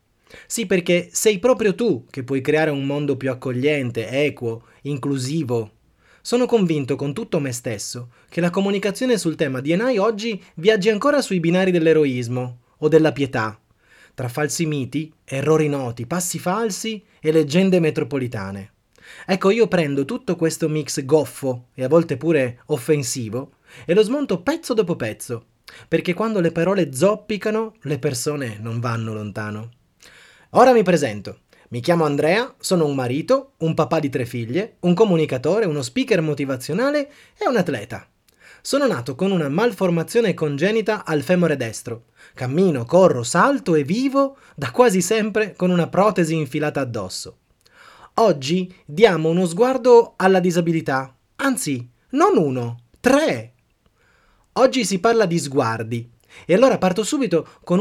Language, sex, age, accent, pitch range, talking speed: Italian, male, 20-39, native, 130-195 Hz, 145 wpm